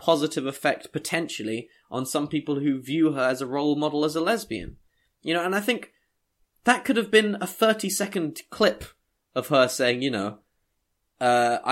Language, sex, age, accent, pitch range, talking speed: English, male, 10-29, British, 130-185 Hz, 180 wpm